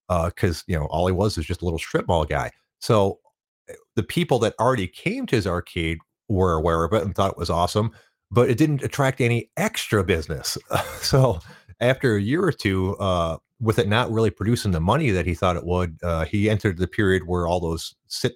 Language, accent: English, American